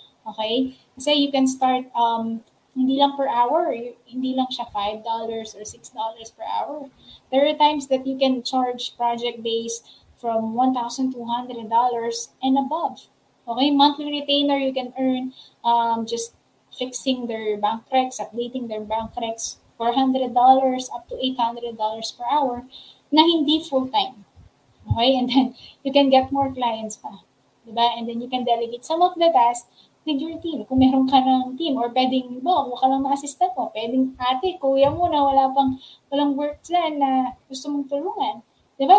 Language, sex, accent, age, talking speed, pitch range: English, female, Filipino, 20-39, 160 wpm, 240-285 Hz